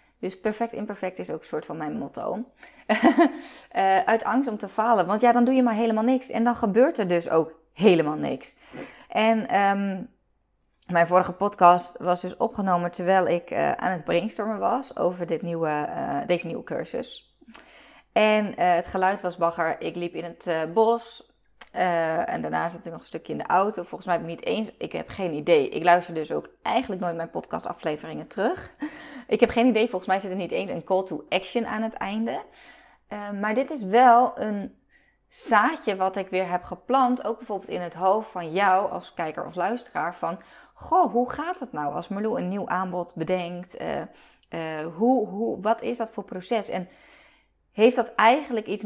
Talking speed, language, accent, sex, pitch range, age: 195 wpm, Dutch, Dutch, female, 175-235 Hz, 20-39